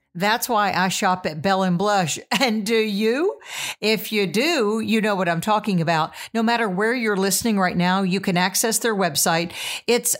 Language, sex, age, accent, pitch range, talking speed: English, female, 50-69, American, 185-230 Hz, 190 wpm